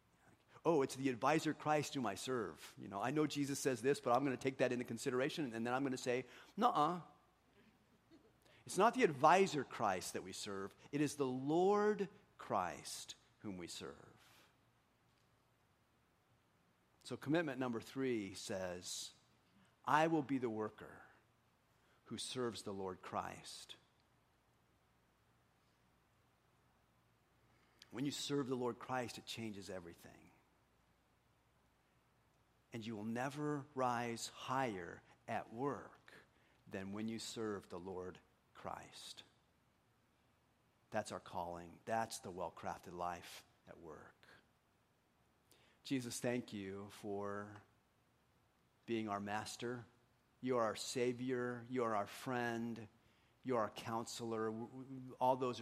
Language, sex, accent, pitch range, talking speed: English, male, American, 105-130 Hz, 120 wpm